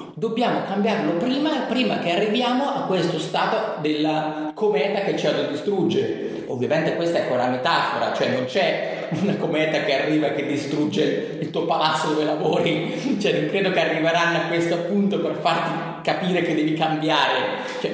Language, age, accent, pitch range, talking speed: Italian, 30-49, native, 155-215 Hz, 165 wpm